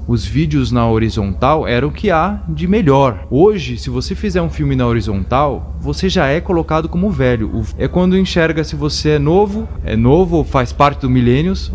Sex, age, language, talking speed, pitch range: male, 30-49, Portuguese, 195 wpm, 85-140 Hz